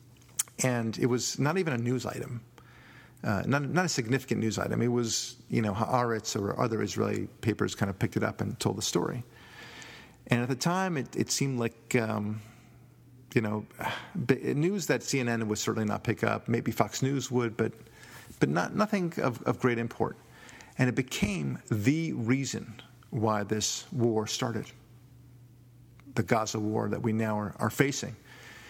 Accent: American